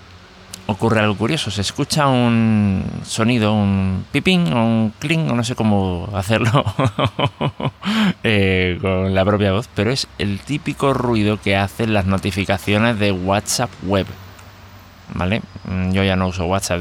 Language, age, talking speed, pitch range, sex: Spanish, 20-39, 145 wpm, 95-110 Hz, male